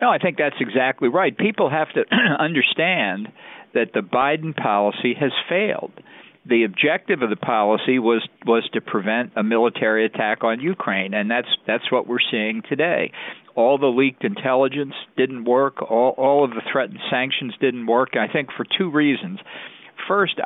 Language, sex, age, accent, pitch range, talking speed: English, male, 50-69, American, 110-135 Hz, 165 wpm